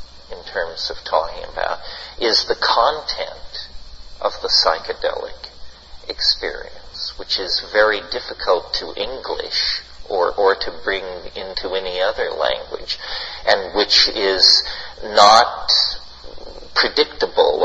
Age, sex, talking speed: 40-59, male, 100 wpm